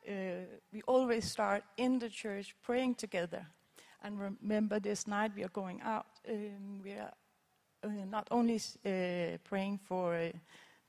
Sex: female